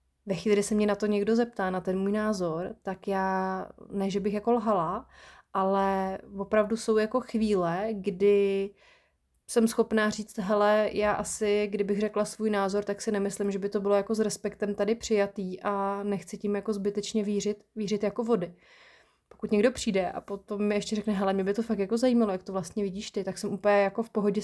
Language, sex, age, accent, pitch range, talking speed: Czech, female, 20-39, native, 195-215 Hz, 205 wpm